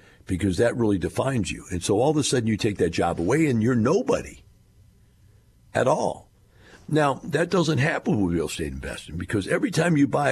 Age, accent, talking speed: 60-79, American, 200 wpm